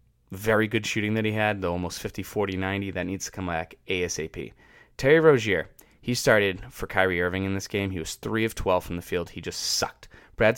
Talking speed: 210 wpm